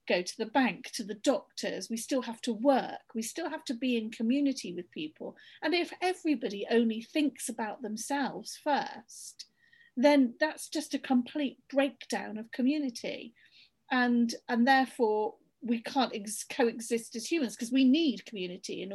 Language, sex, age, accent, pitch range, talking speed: English, female, 40-59, British, 215-270 Hz, 160 wpm